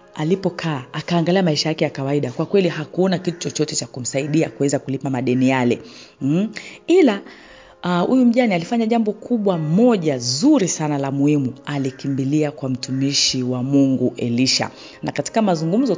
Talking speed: 145 wpm